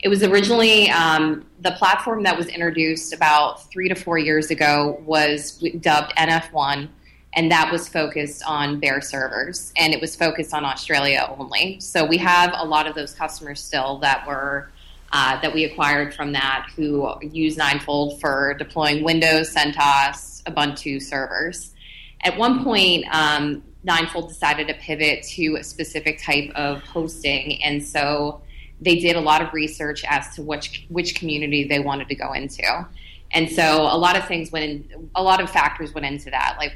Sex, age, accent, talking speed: female, 20-39, American, 170 wpm